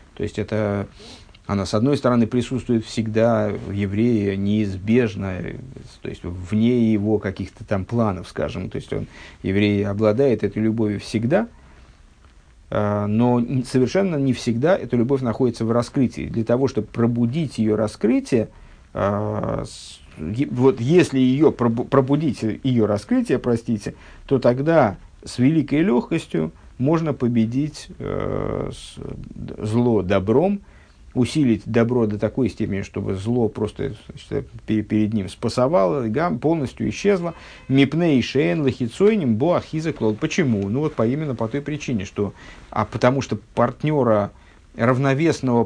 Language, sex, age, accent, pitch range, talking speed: Russian, male, 50-69, native, 105-130 Hz, 115 wpm